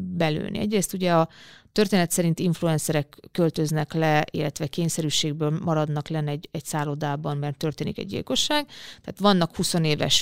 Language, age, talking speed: Hungarian, 30-49, 140 wpm